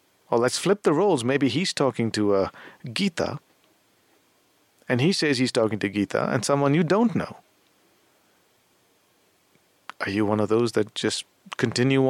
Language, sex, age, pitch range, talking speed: English, male, 50-69, 110-175 Hz, 155 wpm